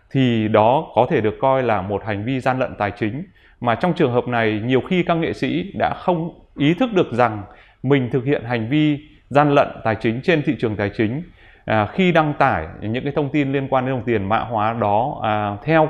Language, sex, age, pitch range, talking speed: Vietnamese, male, 20-39, 115-150 Hz, 225 wpm